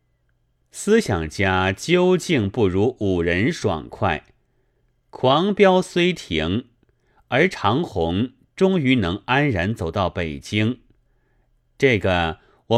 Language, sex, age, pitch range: Chinese, male, 30-49, 95-130 Hz